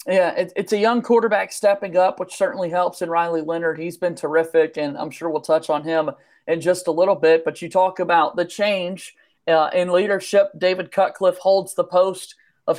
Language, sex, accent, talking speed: English, male, American, 205 wpm